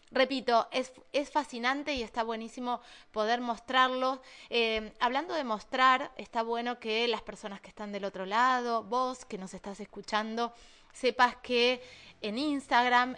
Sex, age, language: female, 20-39, Spanish